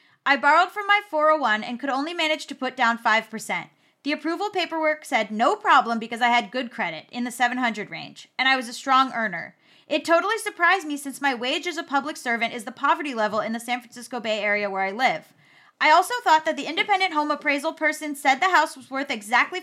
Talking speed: 225 wpm